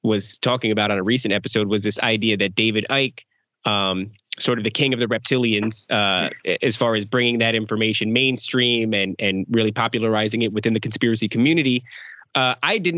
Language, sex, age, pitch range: English, male, 20-39, 110-130 Hz